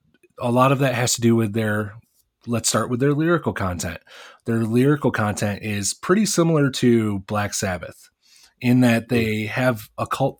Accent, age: American, 30-49